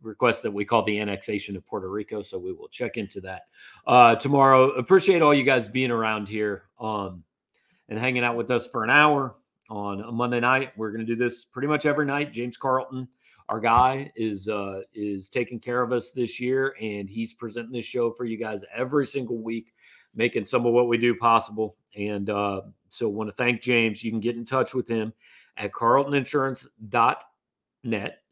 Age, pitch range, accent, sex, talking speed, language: 40-59, 105-125 Hz, American, male, 195 wpm, English